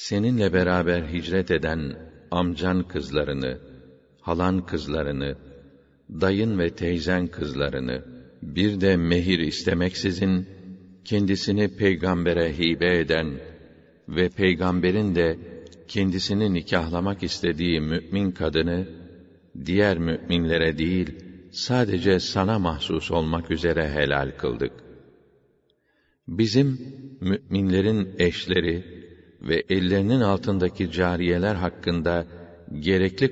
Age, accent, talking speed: 60-79, Turkish, 85 wpm